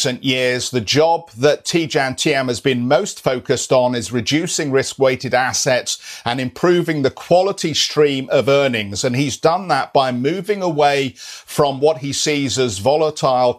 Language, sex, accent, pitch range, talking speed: English, male, British, 125-150 Hz, 160 wpm